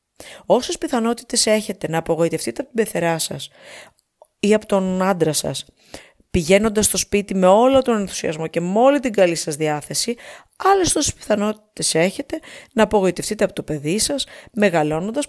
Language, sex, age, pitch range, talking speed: Greek, female, 30-49, 160-215 Hz, 155 wpm